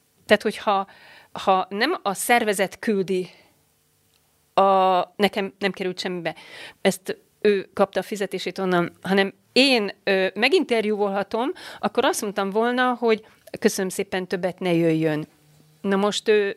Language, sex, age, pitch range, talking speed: Hungarian, female, 40-59, 195-235 Hz, 125 wpm